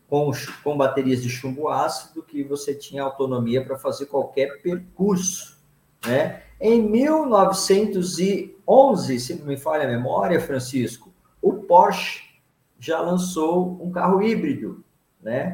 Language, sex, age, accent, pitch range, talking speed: Portuguese, male, 50-69, Brazilian, 150-195 Hz, 120 wpm